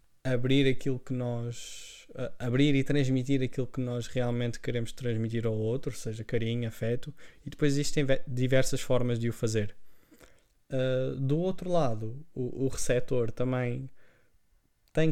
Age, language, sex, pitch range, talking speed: 20-39, Portuguese, male, 115-135 Hz, 135 wpm